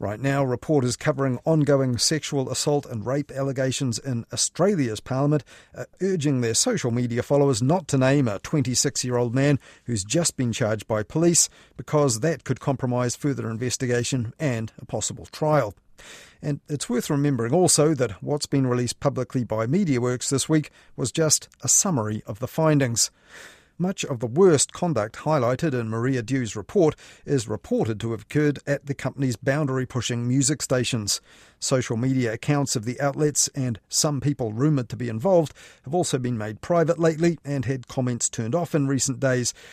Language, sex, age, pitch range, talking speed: English, male, 40-59, 120-150 Hz, 165 wpm